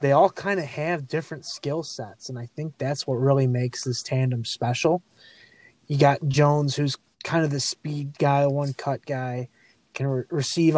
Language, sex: English, male